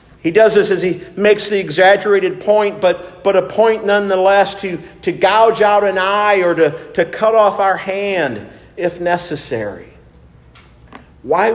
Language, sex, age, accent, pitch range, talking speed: English, male, 50-69, American, 150-185 Hz, 155 wpm